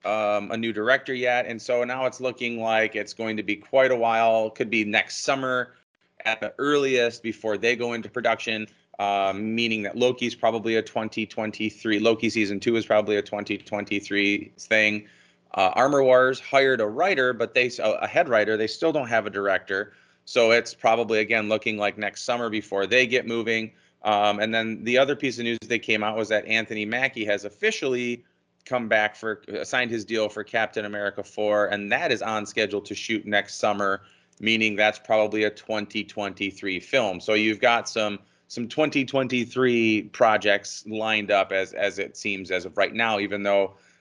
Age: 30-49